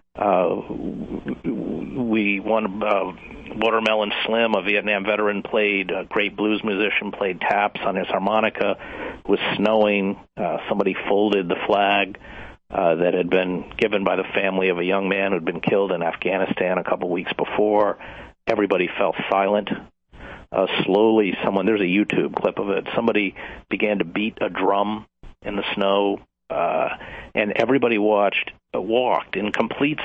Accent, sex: American, male